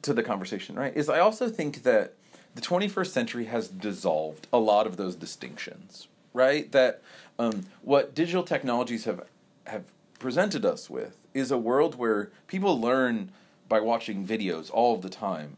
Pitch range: 110-150 Hz